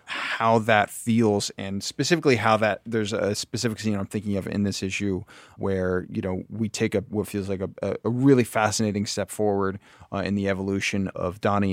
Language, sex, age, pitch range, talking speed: English, male, 20-39, 100-115 Hz, 195 wpm